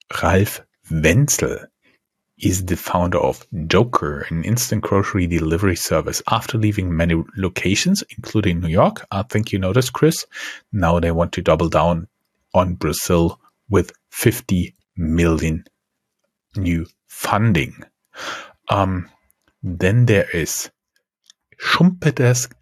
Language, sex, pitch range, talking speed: English, male, 85-115 Hz, 110 wpm